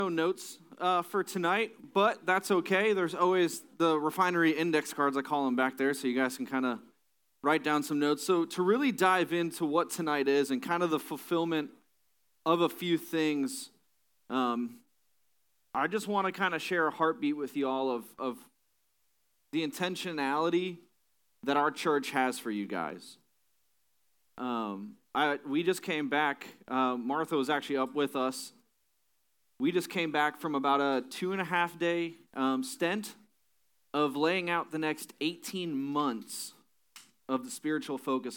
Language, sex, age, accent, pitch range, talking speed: English, male, 30-49, American, 130-170 Hz, 165 wpm